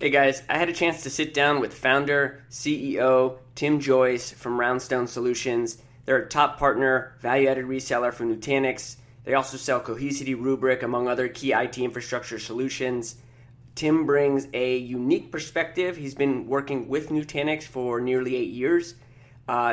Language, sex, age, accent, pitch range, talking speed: English, male, 20-39, American, 125-140 Hz, 155 wpm